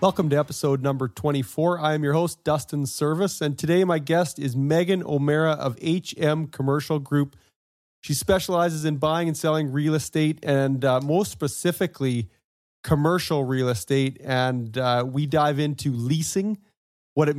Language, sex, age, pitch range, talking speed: English, male, 30-49, 130-155 Hz, 155 wpm